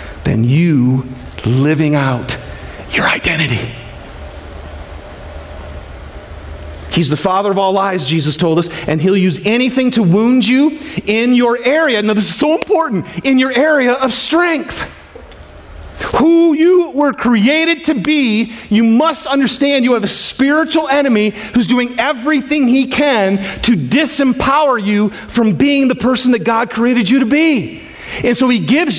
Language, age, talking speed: English, 40-59, 145 wpm